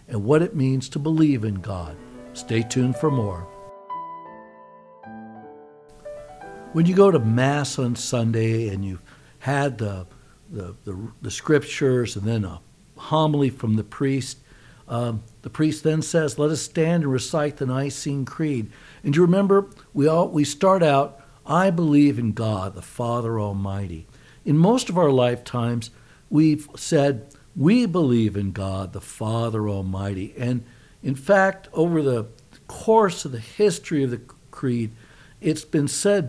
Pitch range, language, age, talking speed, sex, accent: 115-155 Hz, English, 60-79, 150 wpm, male, American